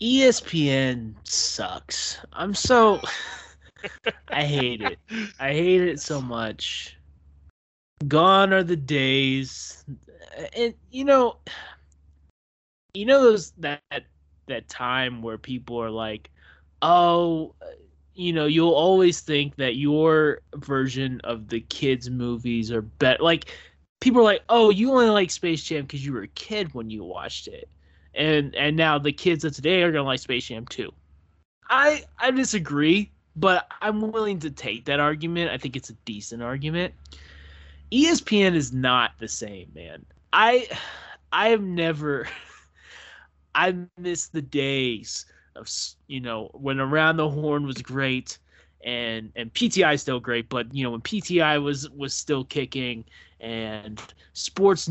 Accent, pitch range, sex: American, 115-170 Hz, male